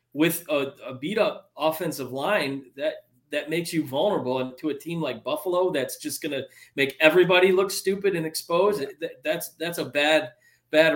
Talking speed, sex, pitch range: 175 wpm, male, 135-185 Hz